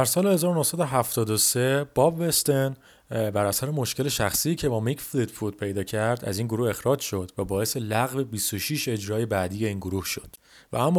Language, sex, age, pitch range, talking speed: Persian, male, 30-49, 105-145 Hz, 170 wpm